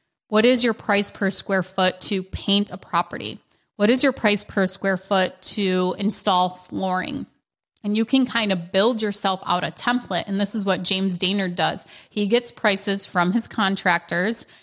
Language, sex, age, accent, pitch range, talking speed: English, female, 20-39, American, 185-205 Hz, 180 wpm